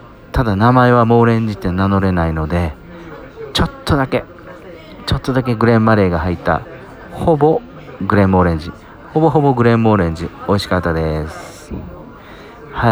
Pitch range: 90-125 Hz